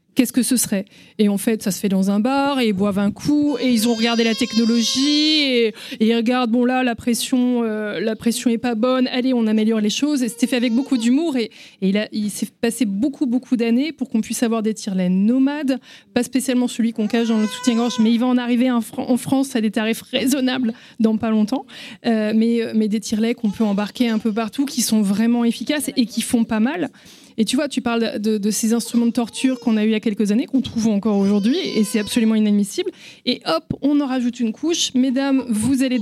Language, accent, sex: French, French, female